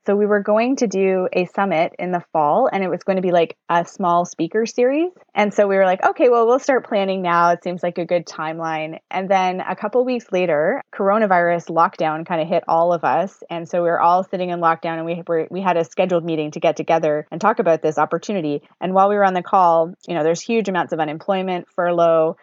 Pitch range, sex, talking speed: 170-195 Hz, female, 250 wpm